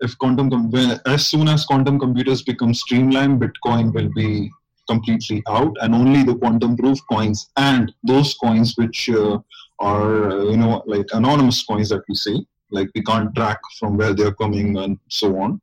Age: 20-39